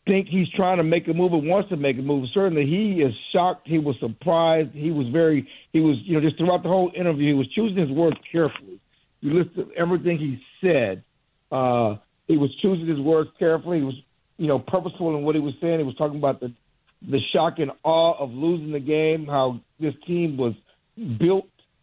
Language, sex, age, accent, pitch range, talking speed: English, male, 60-79, American, 145-180 Hz, 215 wpm